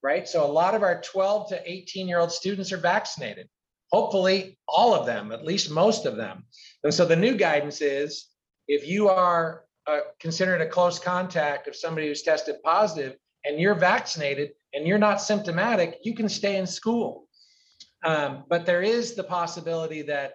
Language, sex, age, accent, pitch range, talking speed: English, male, 40-59, American, 150-190 Hz, 180 wpm